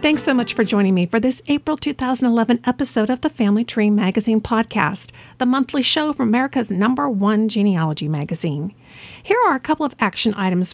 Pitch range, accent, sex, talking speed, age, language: 195-255 Hz, American, female, 185 wpm, 50-69, English